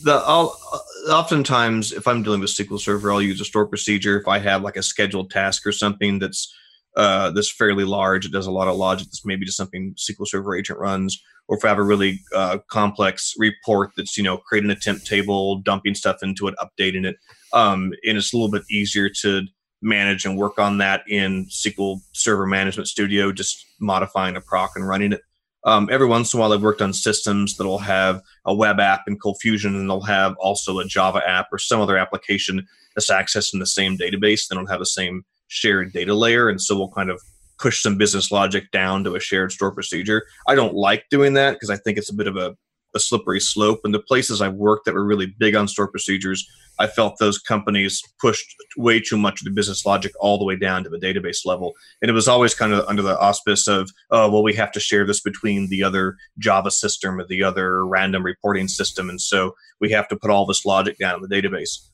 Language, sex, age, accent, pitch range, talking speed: English, male, 30-49, American, 95-105 Hz, 225 wpm